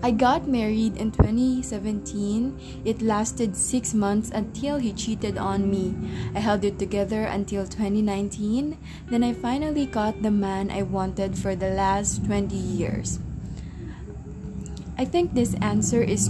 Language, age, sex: English, 20-39, female